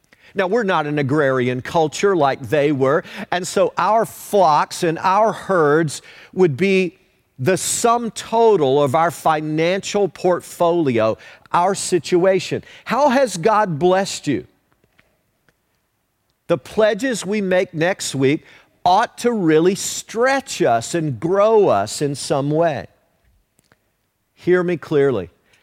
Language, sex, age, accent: English, male, 50-69, American